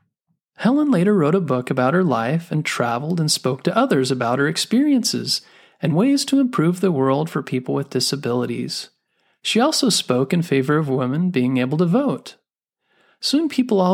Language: English